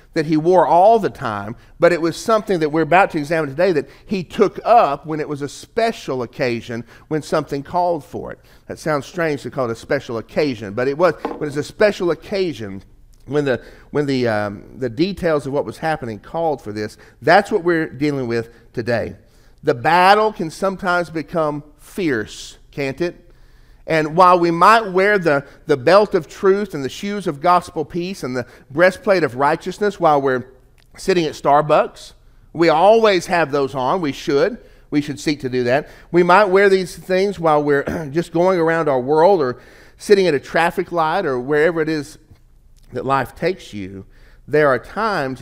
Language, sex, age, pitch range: English, male, 40-59, 125-175 Hz